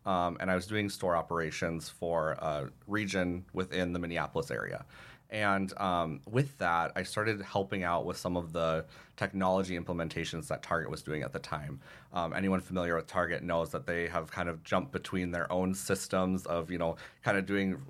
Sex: male